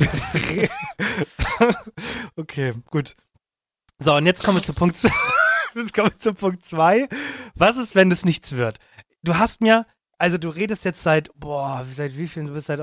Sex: male